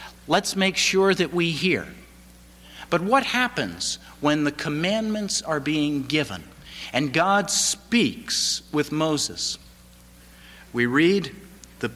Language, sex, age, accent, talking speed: English, male, 50-69, American, 115 wpm